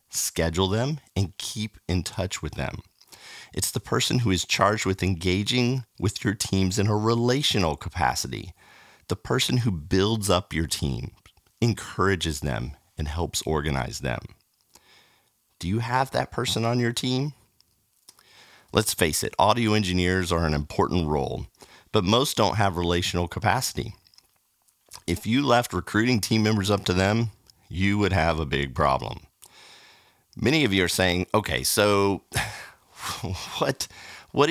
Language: English